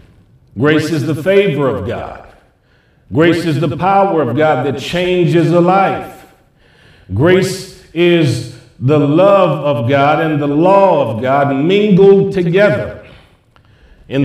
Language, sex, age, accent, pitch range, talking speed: English, male, 50-69, American, 140-185 Hz, 125 wpm